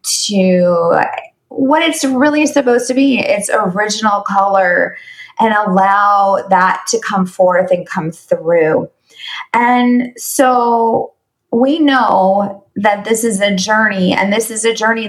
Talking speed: 130 wpm